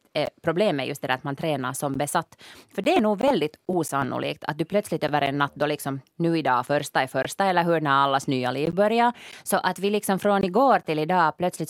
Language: Swedish